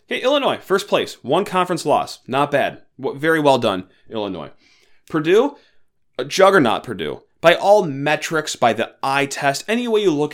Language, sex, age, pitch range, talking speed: English, male, 30-49, 125-165 Hz, 165 wpm